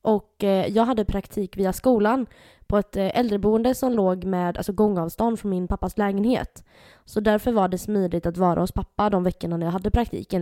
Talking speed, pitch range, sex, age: 190 wpm, 180-225 Hz, female, 20-39